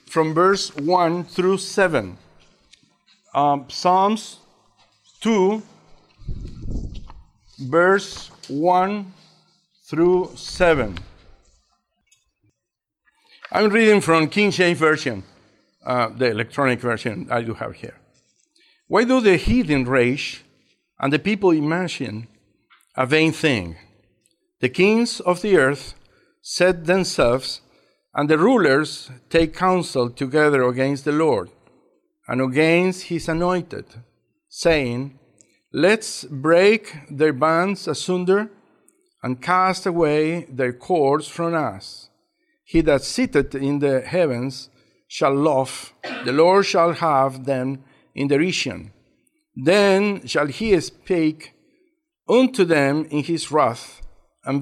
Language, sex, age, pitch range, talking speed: English, male, 60-79, 135-190 Hz, 105 wpm